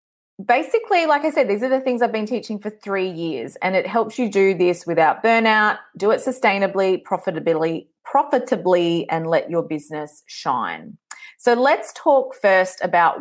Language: English